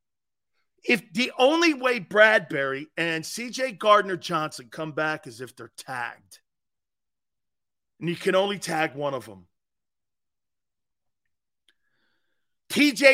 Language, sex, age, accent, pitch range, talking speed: English, male, 40-59, American, 160-250 Hz, 105 wpm